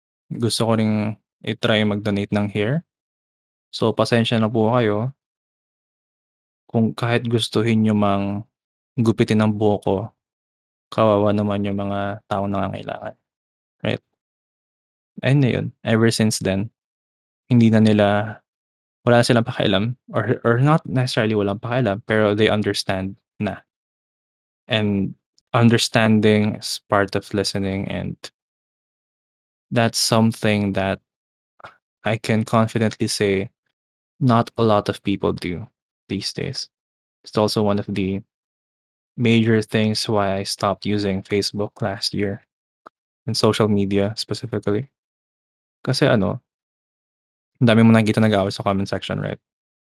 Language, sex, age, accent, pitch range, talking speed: Filipino, male, 20-39, native, 100-115 Hz, 120 wpm